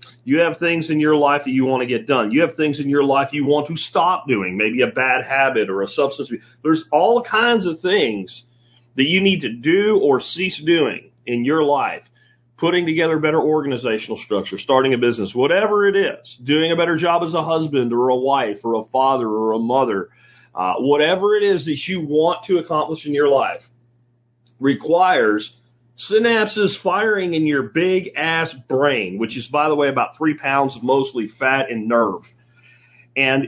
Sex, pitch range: male, 120-165 Hz